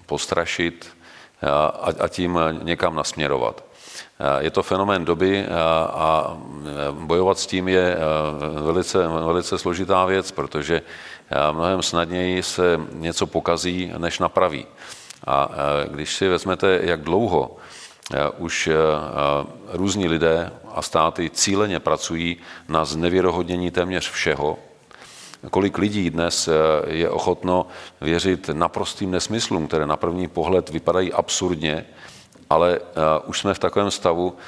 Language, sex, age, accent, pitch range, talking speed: Czech, male, 40-59, native, 80-90 Hz, 110 wpm